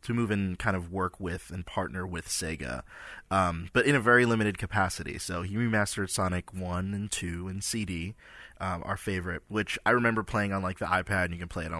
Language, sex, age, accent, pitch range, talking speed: English, male, 20-39, American, 90-115 Hz, 225 wpm